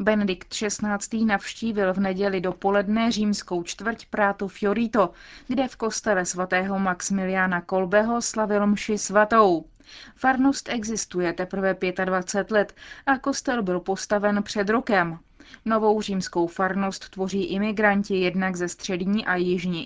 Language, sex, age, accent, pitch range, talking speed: Czech, female, 30-49, native, 190-225 Hz, 120 wpm